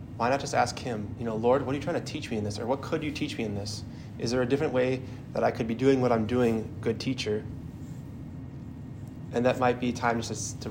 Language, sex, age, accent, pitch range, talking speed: English, male, 20-39, American, 115-130 Hz, 265 wpm